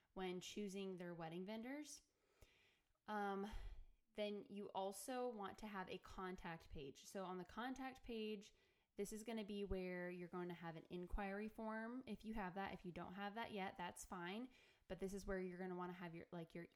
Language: English